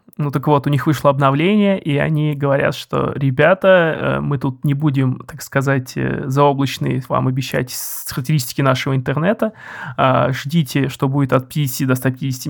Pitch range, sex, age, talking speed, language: 130-155 Hz, male, 20-39, 150 wpm, Russian